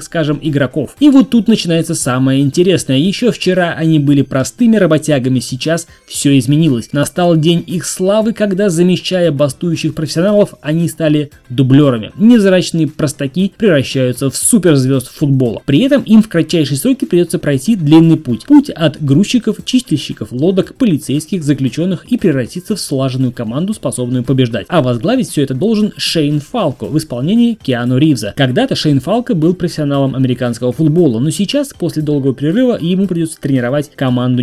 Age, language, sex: 20-39, Russian, male